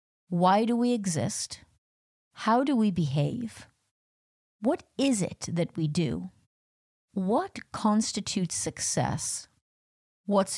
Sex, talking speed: female, 100 wpm